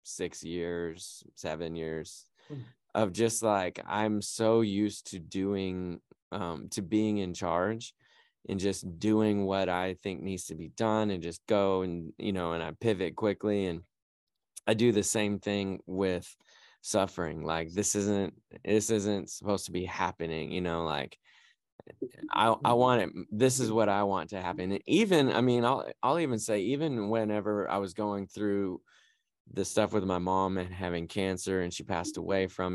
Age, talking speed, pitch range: 20-39, 175 wpm, 90-110 Hz